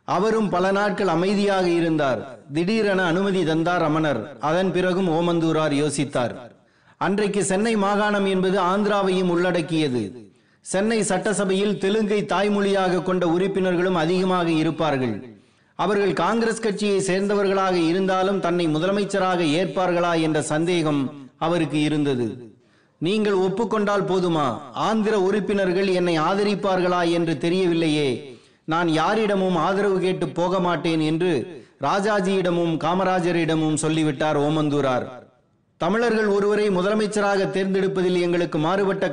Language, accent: Tamil, native